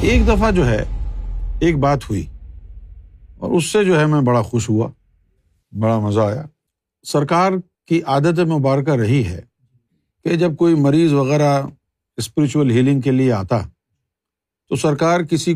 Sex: male